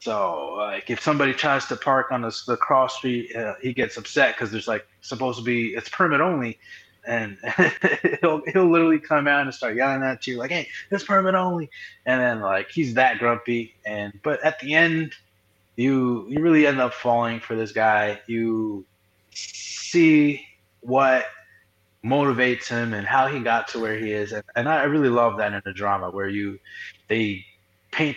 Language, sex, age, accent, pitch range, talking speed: English, male, 20-39, American, 110-135 Hz, 185 wpm